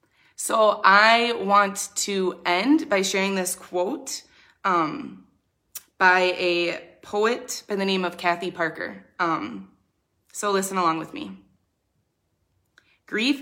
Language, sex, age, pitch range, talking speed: English, female, 20-39, 165-200 Hz, 115 wpm